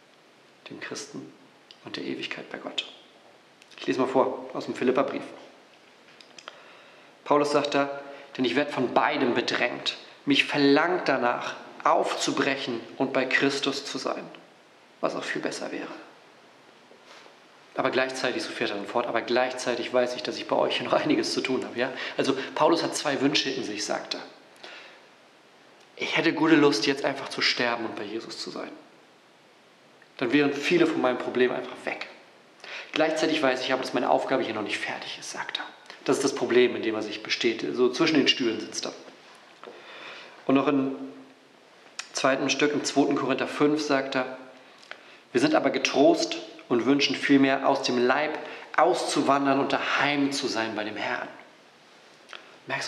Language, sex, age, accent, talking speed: German, male, 40-59, German, 165 wpm